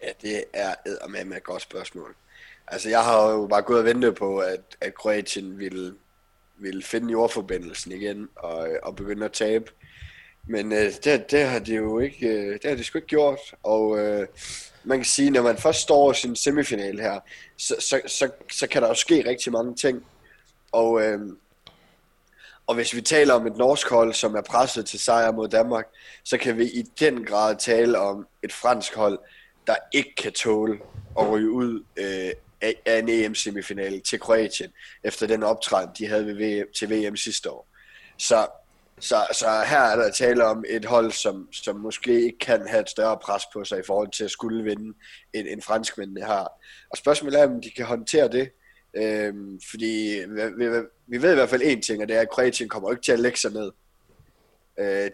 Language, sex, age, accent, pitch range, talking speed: Danish, male, 20-39, native, 105-120 Hz, 195 wpm